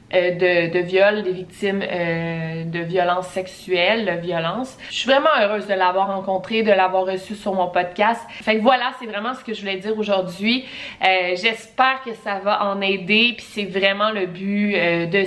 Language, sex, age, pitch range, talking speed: French, female, 20-39, 185-235 Hz, 195 wpm